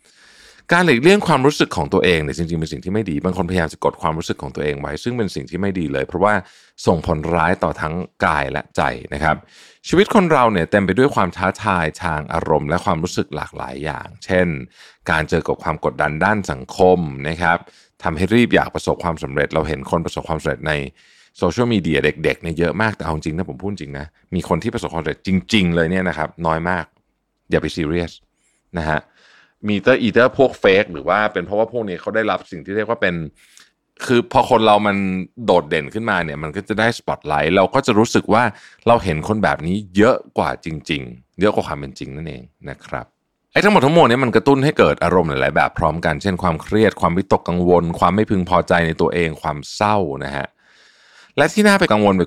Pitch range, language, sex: 80-105 Hz, Thai, male